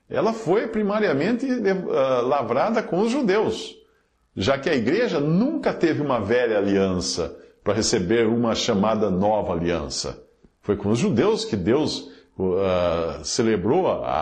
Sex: male